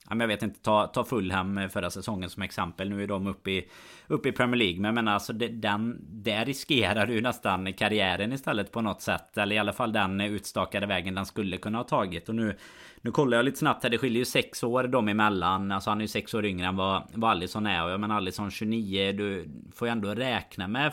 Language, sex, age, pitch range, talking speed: Swedish, male, 30-49, 95-115 Hz, 225 wpm